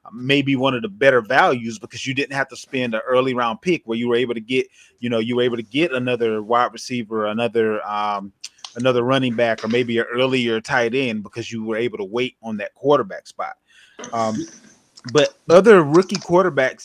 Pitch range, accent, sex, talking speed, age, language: 115-150 Hz, American, male, 205 wpm, 20-39, English